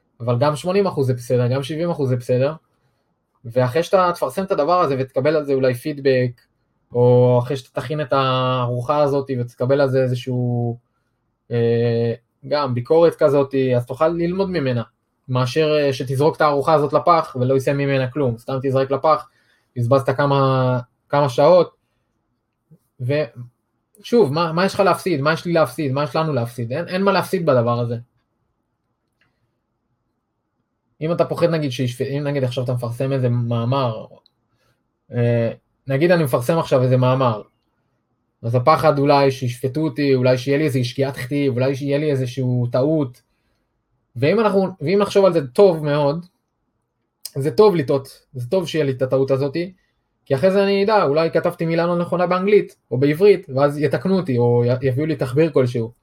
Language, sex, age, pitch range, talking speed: Hebrew, male, 20-39, 120-155 Hz, 135 wpm